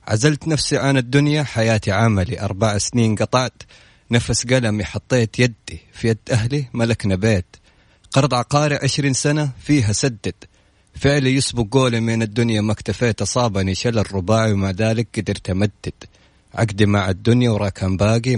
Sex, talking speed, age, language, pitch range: male, 140 wpm, 30-49, Arabic, 100-130 Hz